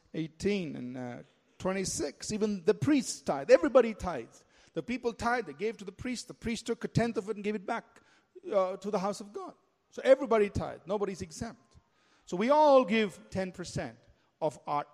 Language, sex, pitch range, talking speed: English, male, 185-235 Hz, 190 wpm